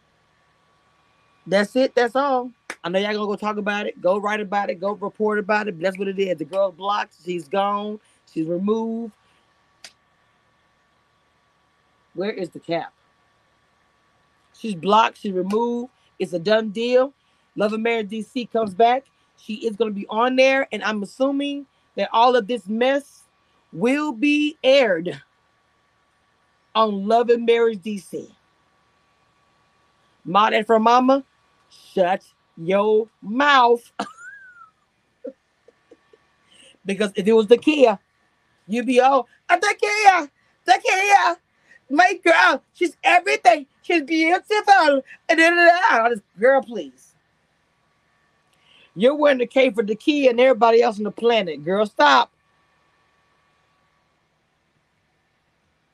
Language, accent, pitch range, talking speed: English, American, 205-275 Hz, 120 wpm